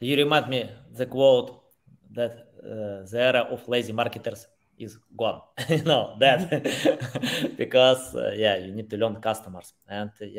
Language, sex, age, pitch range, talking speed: English, male, 20-39, 115-160 Hz, 155 wpm